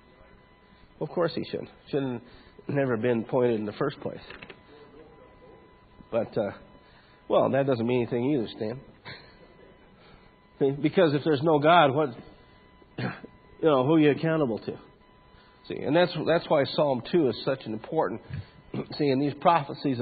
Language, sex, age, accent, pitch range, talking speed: English, male, 50-69, American, 115-145 Hz, 150 wpm